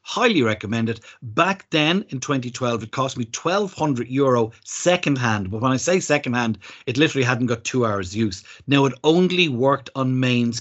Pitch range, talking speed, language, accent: 115-145 Hz, 185 wpm, English, Irish